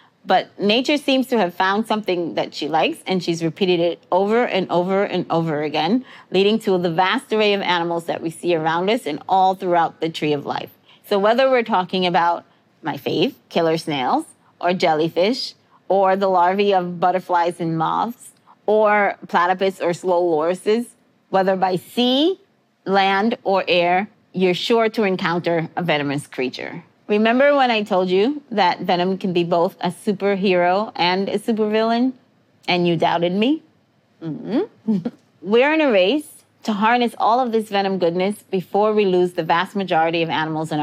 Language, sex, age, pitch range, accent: Korean, female, 30-49, 175-220 Hz, American